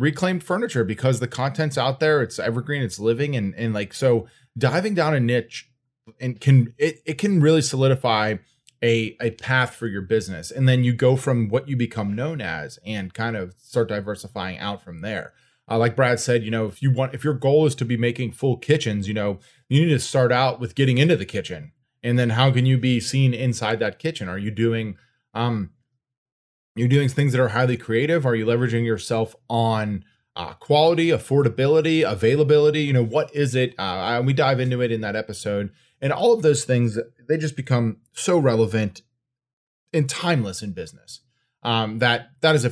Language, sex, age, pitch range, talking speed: English, male, 20-39, 105-135 Hz, 200 wpm